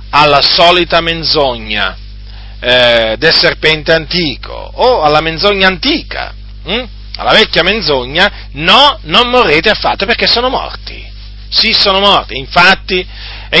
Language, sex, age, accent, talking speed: Italian, male, 40-59, native, 120 wpm